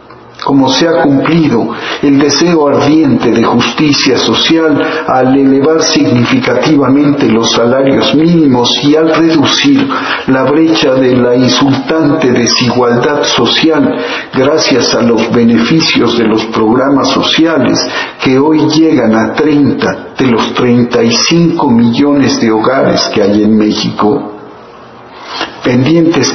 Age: 50-69